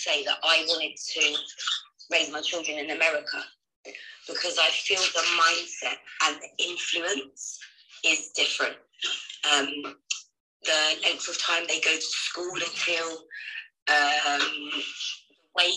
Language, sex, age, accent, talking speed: English, female, 30-49, British, 125 wpm